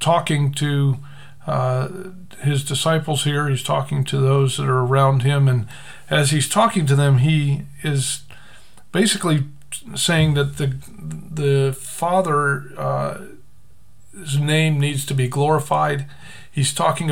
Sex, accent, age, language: male, American, 50-69, English